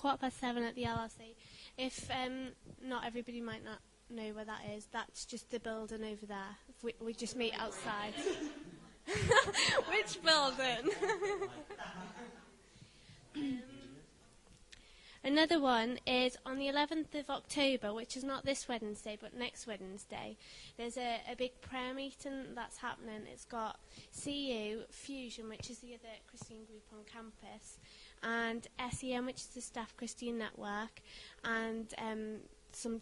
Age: 20-39